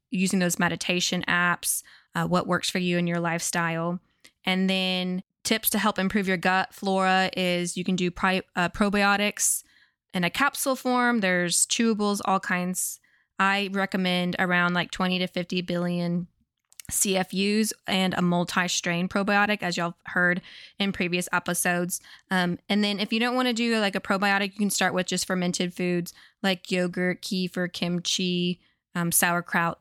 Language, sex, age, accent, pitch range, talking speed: English, female, 20-39, American, 175-205 Hz, 160 wpm